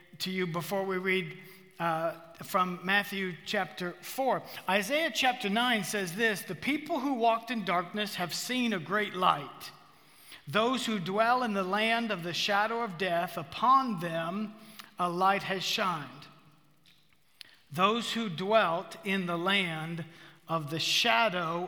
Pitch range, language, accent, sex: 175-220 Hz, English, American, male